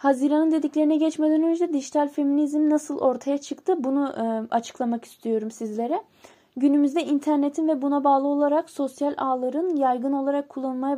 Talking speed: 130 wpm